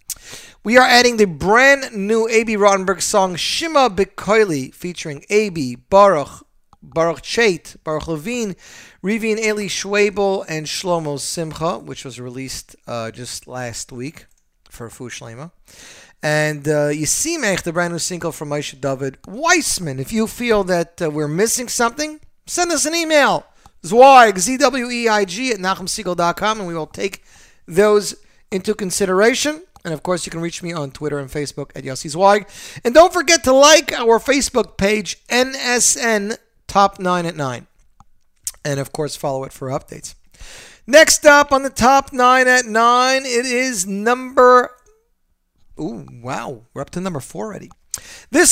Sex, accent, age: male, American, 40-59